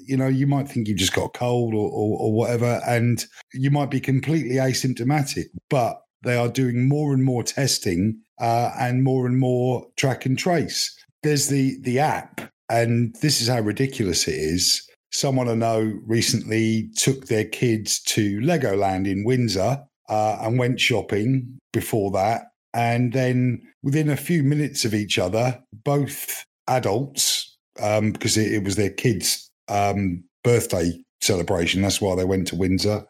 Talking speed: 165 wpm